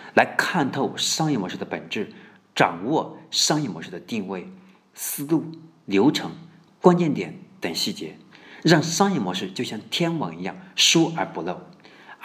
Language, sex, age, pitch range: Chinese, male, 50-69, 105-180 Hz